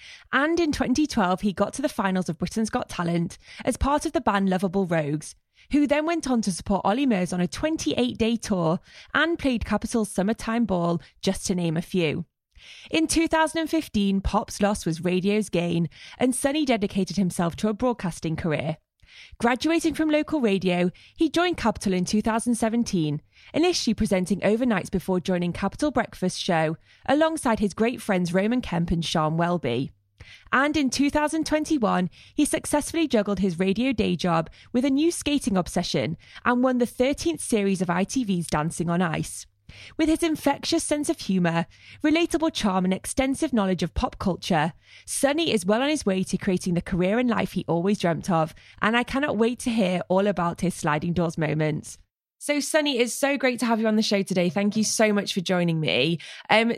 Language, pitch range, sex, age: English, 175-255 Hz, female, 20-39